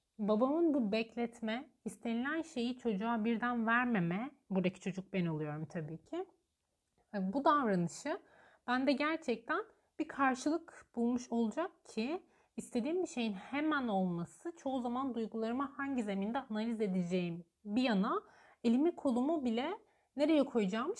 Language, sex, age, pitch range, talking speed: Turkish, female, 30-49, 205-280 Hz, 120 wpm